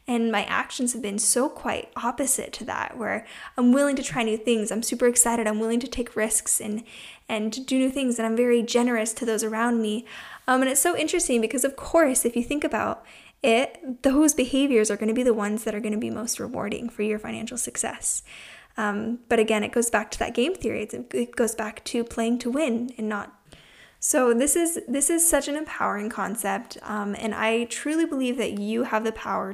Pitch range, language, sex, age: 220-265 Hz, English, female, 10-29